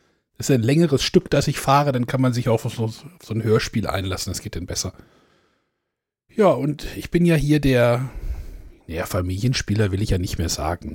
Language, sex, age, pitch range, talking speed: German, male, 60-79, 105-135 Hz, 210 wpm